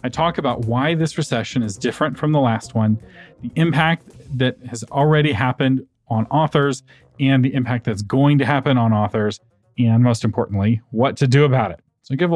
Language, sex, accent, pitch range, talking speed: English, male, American, 110-140 Hz, 195 wpm